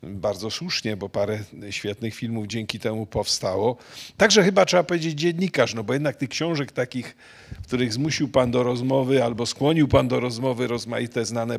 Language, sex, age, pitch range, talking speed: Polish, male, 50-69, 115-145 Hz, 170 wpm